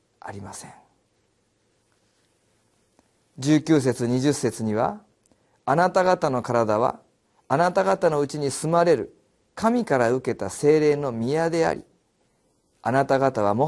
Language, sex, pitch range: Japanese, male, 135-205 Hz